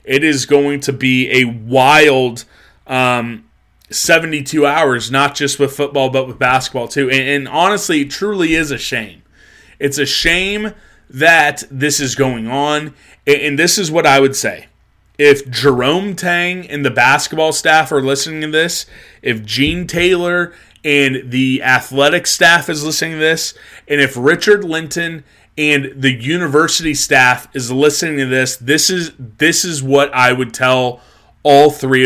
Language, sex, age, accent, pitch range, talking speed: English, male, 20-39, American, 130-165 Hz, 160 wpm